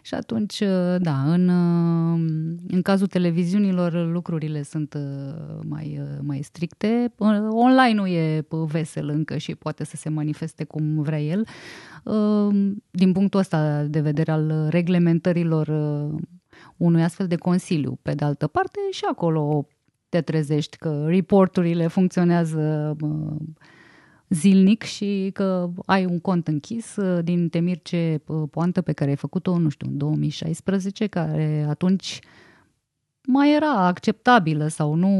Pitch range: 155-195 Hz